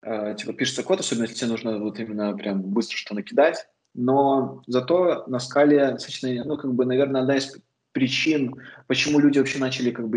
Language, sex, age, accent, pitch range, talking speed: Russian, male, 20-39, native, 110-130 Hz, 175 wpm